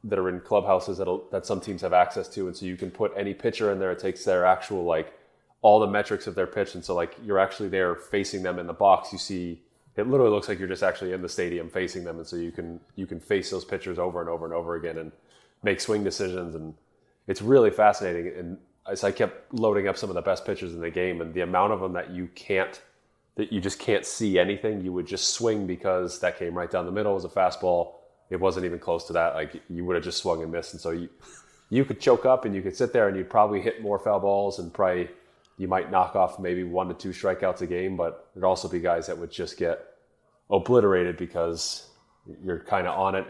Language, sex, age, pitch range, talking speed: English, male, 20-39, 85-100 Hz, 255 wpm